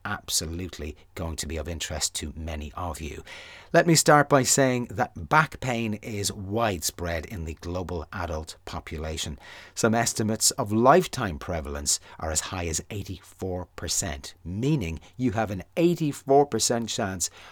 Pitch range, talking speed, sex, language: 85-125 Hz, 140 wpm, male, English